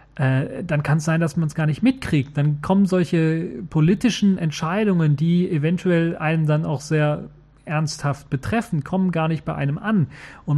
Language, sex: German, male